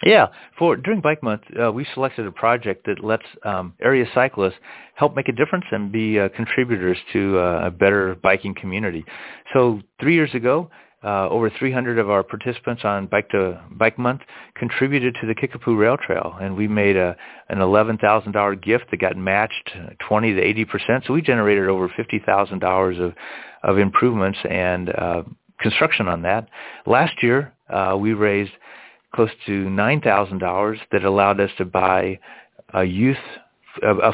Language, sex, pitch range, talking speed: English, male, 95-115 Hz, 170 wpm